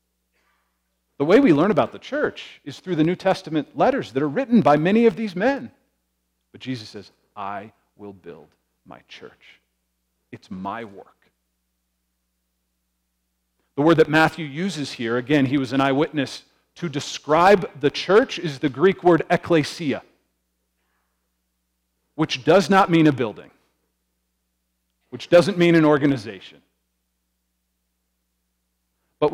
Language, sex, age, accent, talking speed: English, male, 40-59, American, 130 wpm